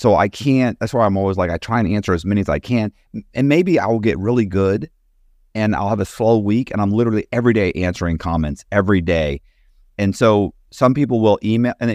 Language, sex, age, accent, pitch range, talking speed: English, male, 40-59, American, 80-105 Hz, 230 wpm